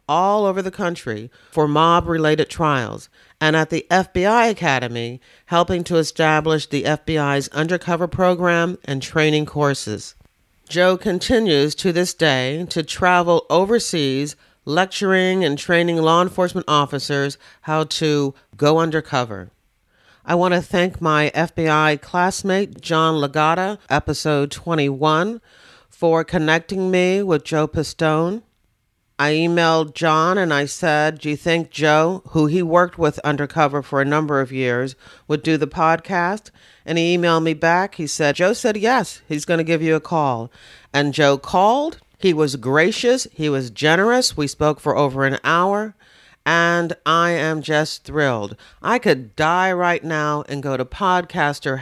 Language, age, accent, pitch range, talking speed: English, 40-59, American, 145-175 Hz, 145 wpm